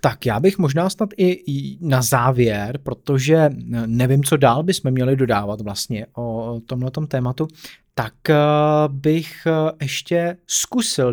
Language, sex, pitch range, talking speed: Czech, male, 115-160 Hz, 125 wpm